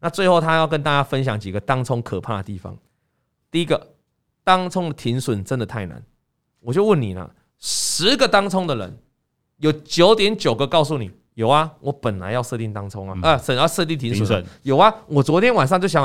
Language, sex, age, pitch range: Chinese, male, 20-39, 125-200 Hz